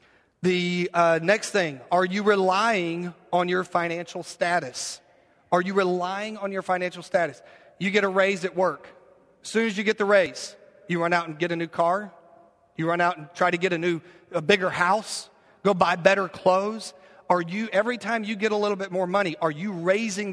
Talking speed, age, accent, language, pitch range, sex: 205 wpm, 40-59, American, English, 165-195 Hz, male